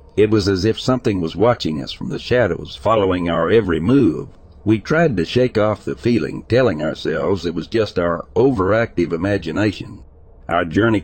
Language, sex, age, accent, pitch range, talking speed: English, male, 60-79, American, 85-115 Hz, 175 wpm